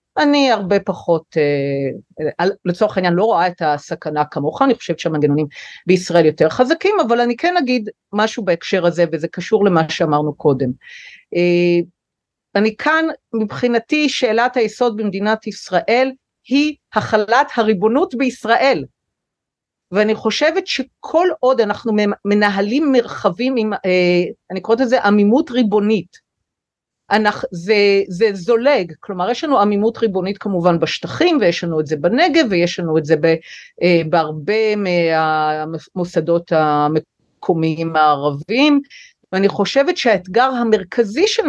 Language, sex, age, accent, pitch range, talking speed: Hebrew, female, 40-59, native, 170-235 Hz, 115 wpm